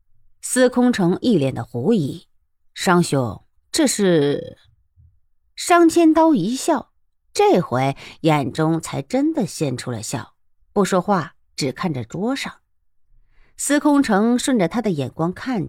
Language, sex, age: Chinese, female, 50-69